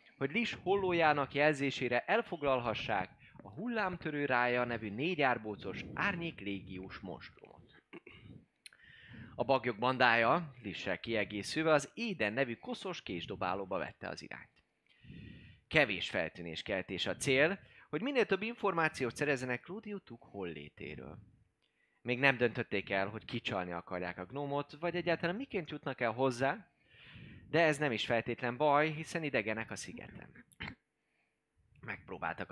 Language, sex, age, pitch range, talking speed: Hungarian, male, 20-39, 115-160 Hz, 115 wpm